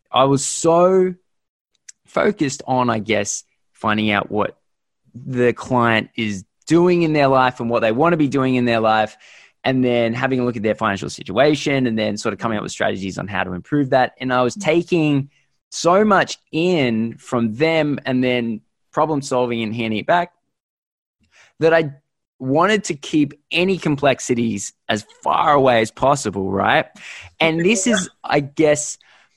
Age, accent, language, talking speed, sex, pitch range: 20-39, Australian, English, 170 wpm, male, 115-155 Hz